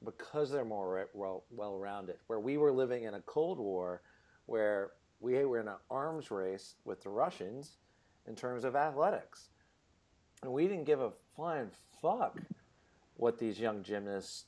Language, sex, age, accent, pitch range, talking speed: English, male, 40-59, American, 100-145 Hz, 160 wpm